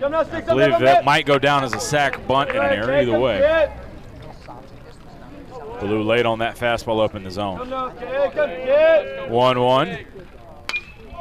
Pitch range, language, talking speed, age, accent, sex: 135-205 Hz, English, 135 wpm, 30-49, American, male